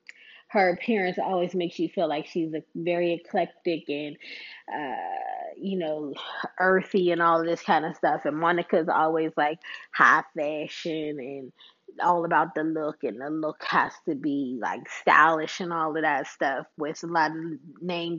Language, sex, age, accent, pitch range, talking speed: English, female, 20-39, American, 165-215 Hz, 170 wpm